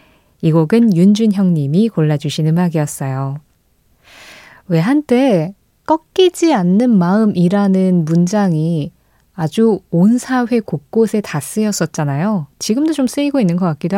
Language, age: Korean, 20-39